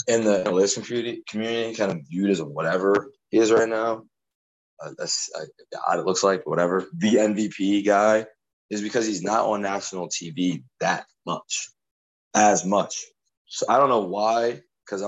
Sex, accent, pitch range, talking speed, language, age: male, American, 90-105 Hz, 165 wpm, English, 20-39